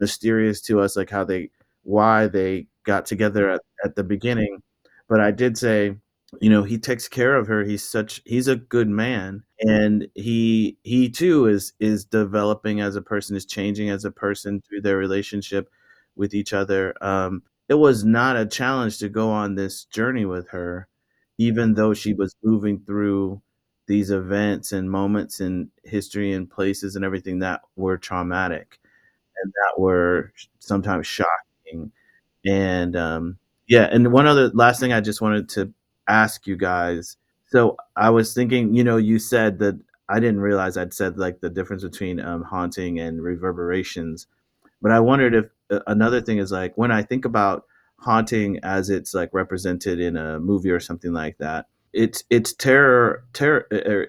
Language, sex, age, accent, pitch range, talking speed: English, male, 30-49, American, 95-110 Hz, 170 wpm